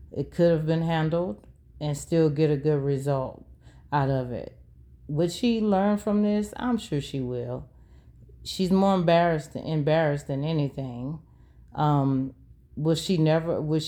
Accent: American